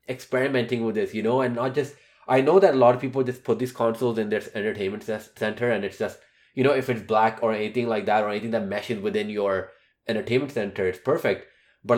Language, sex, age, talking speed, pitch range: English, male, 20-39, 230 wpm, 110-130 Hz